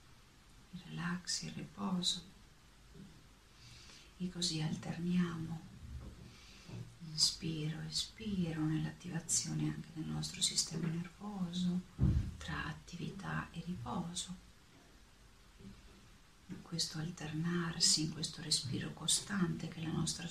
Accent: native